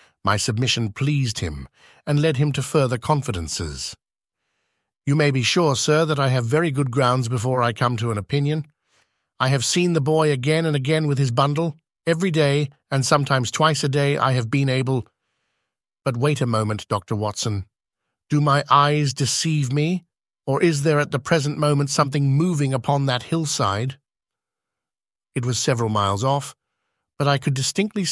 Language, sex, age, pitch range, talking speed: English, male, 50-69, 120-150 Hz, 175 wpm